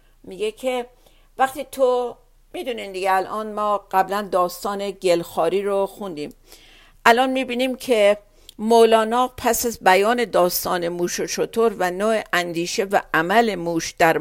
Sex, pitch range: female, 175-230 Hz